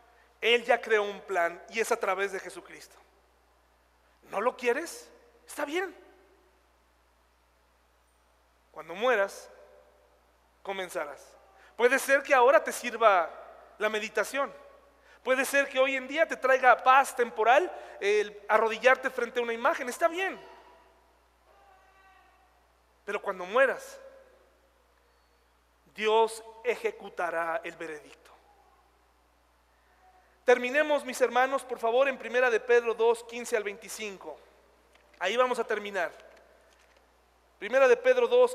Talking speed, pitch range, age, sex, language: 115 wpm, 190-260 Hz, 40-59, male, Spanish